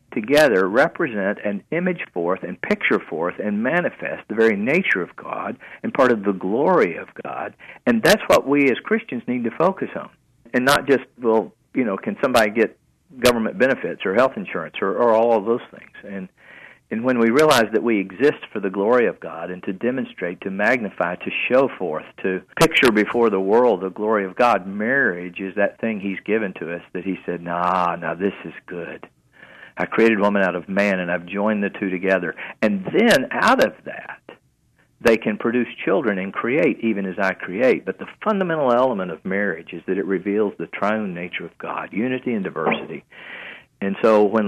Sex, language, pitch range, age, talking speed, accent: male, English, 95-115 Hz, 50-69, 195 wpm, American